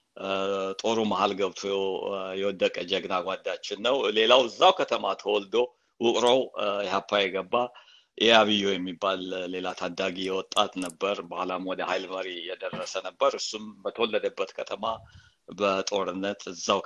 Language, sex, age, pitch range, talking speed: Amharic, male, 50-69, 95-165 Hz, 105 wpm